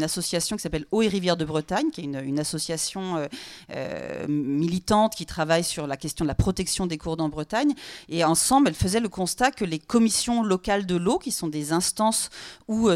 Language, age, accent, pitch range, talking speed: French, 40-59, French, 170-215 Hz, 220 wpm